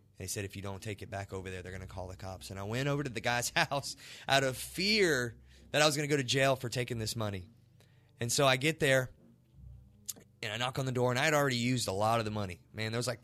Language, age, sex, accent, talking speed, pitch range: English, 20-39, male, American, 290 wpm, 100-125 Hz